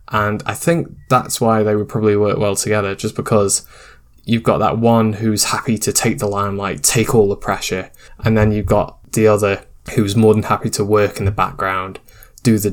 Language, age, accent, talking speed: English, 10-29, British, 205 wpm